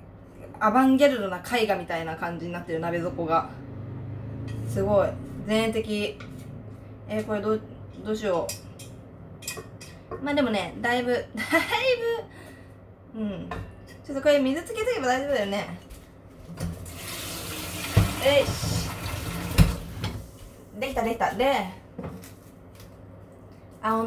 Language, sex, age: Japanese, female, 20-39